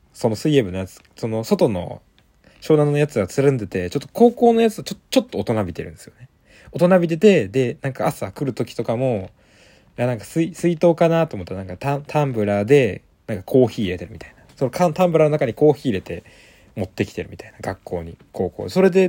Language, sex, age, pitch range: Japanese, male, 20-39, 100-155 Hz